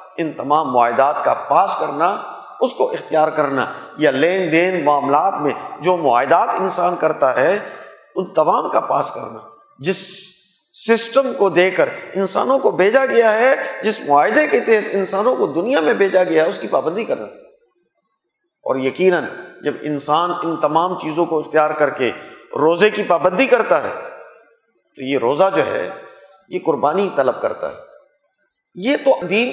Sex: male